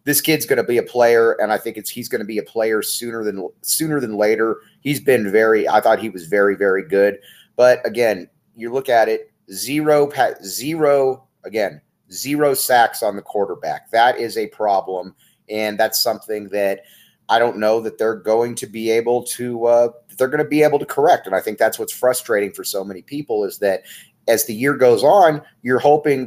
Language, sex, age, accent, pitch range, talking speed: English, male, 30-49, American, 105-135 Hz, 210 wpm